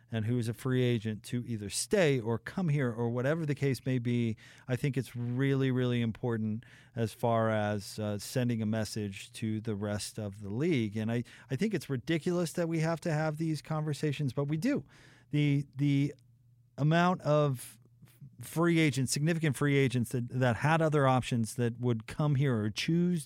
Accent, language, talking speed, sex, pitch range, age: American, English, 190 wpm, male, 120-150 Hz, 40-59